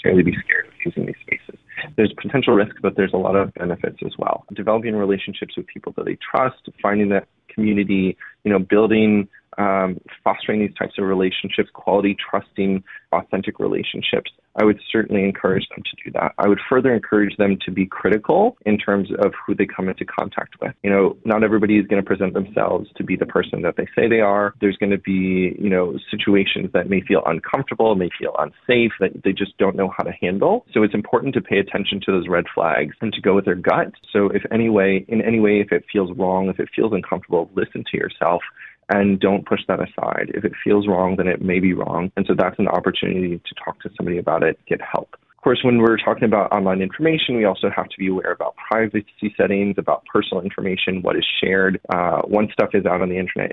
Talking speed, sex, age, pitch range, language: 220 wpm, male, 20-39, 95-105 Hz, English